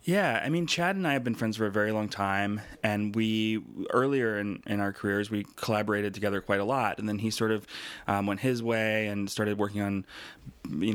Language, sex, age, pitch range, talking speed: English, male, 20-39, 100-110 Hz, 225 wpm